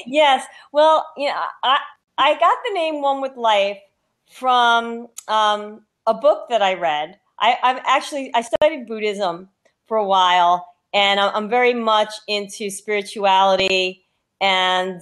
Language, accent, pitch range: English, American, 190-230 Hz